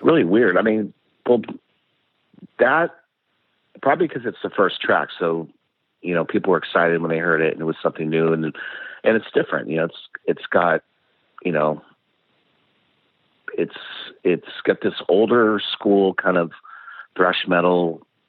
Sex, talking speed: male, 160 wpm